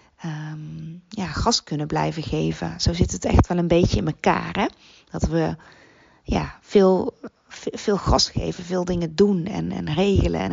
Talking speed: 150 wpm